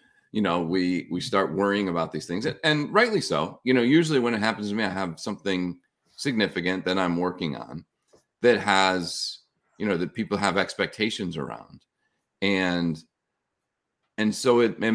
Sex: male